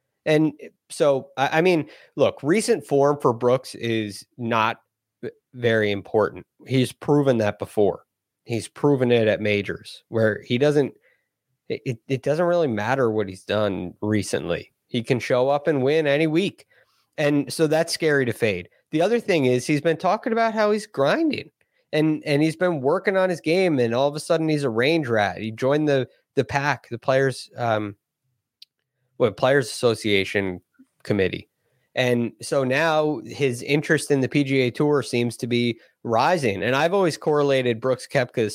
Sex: male